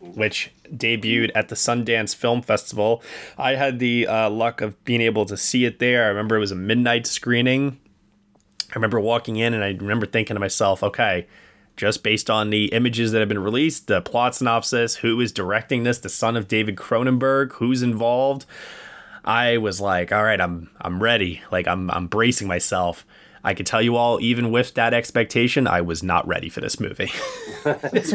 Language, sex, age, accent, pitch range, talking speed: English, male, 20-39, American, 100-125 Hz, 190 wpm